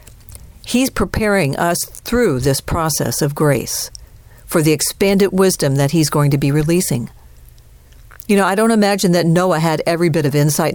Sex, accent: female, American